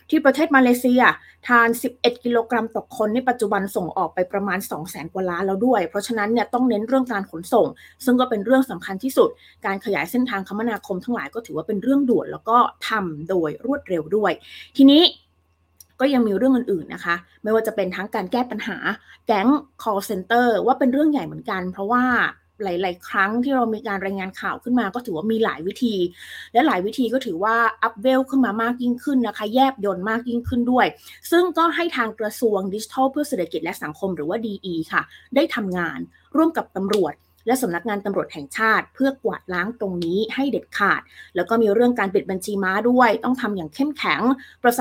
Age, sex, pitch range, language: 20-39, female, 195-250 Hz, Thai